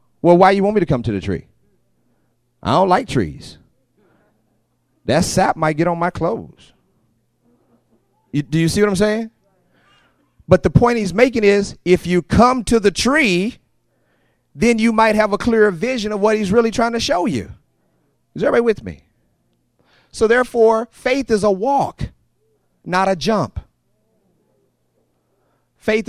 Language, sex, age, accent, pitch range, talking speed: English, male, 30-49, American, 175-225 Hz, 160 wpm